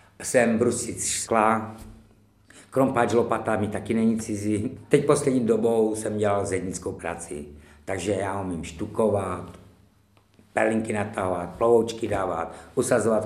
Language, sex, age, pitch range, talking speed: Czech, male, 60-79, 100-120 Hz, 115 wpm